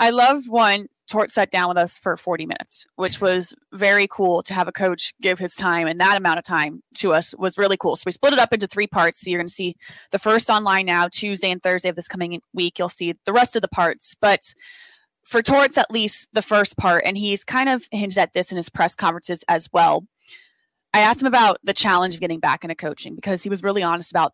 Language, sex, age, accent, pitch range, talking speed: English, female, 20-39, American, 175-210 Hz, 250 wpm